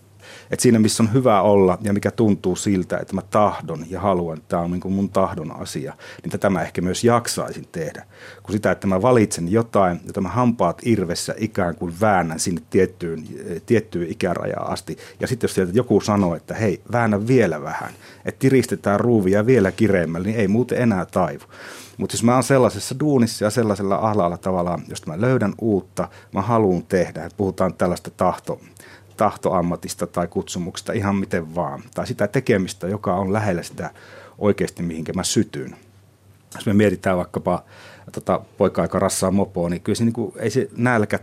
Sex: male